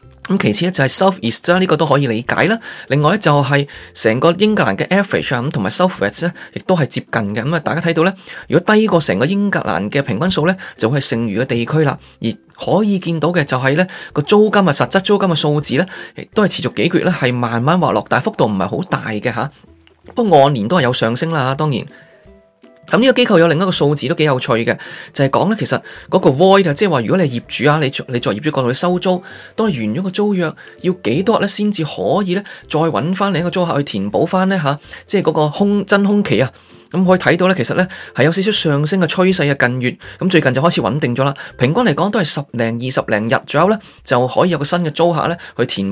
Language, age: Chinese, 20-39